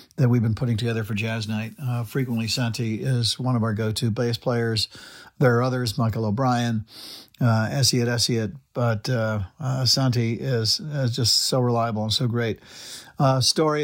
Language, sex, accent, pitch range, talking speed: English, male, American, 115-135 Hz, 175 wpm